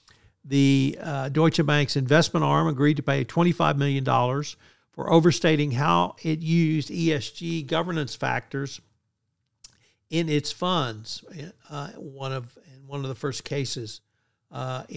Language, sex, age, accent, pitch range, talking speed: English, male, 60-79, American, 125-155 Hz, 130 wpm